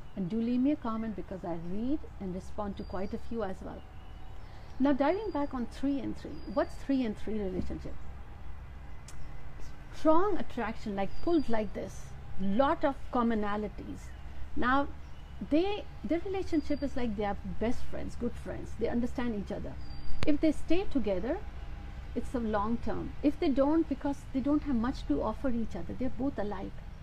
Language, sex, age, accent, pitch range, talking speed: Hindi, female, 60-79, native, 205-280 Hz, 170 wpm